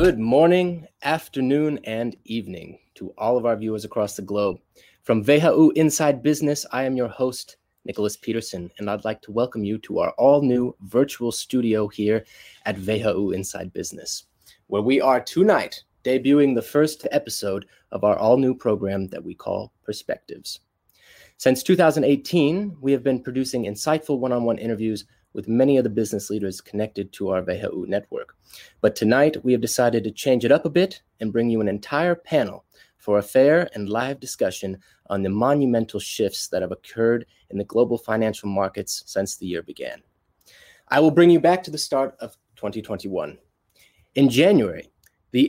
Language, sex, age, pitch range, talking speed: English, male, 20-39, 105-145 Hz, 170 wpm